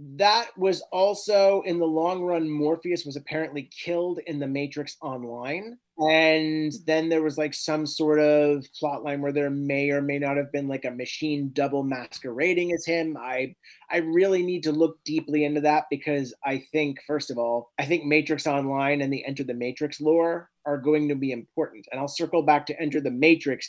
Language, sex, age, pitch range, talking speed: English, male, 30-49, 140-165 Hz, 200 wpm